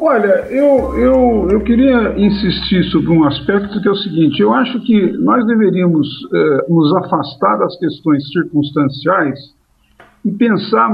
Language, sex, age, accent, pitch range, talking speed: Portuguese, male, 50-69, Brazilian, 165-225 Hz, 145 wpm